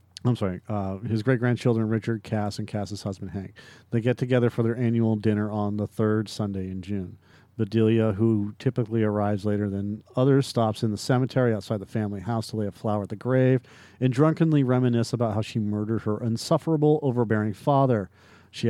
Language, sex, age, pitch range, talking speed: English, male, 50-69, 105-120 Hz, 185 wpm